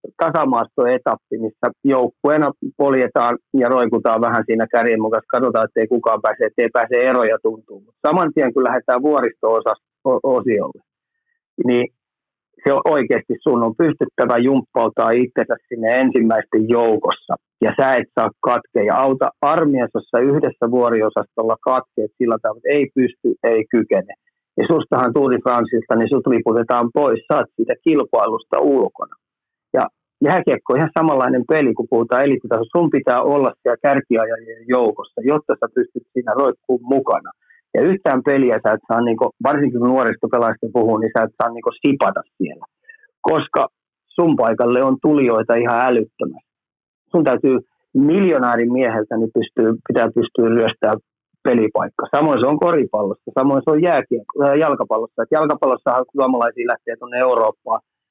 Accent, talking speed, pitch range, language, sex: native, 135 wpm, 120-155 Hz, Finnish, male